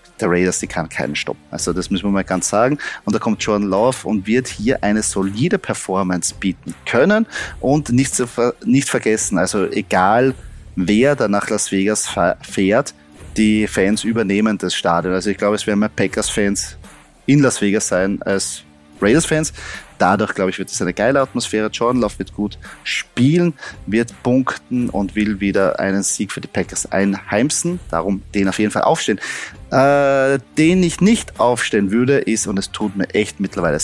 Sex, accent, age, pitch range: male, German, 30-49, 95-130 Hz